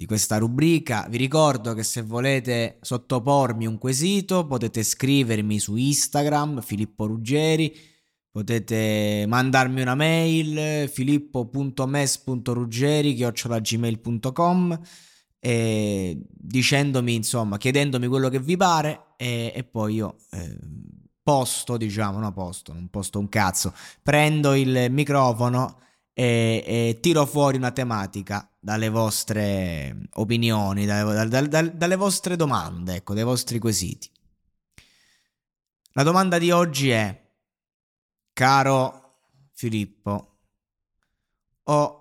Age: 20-39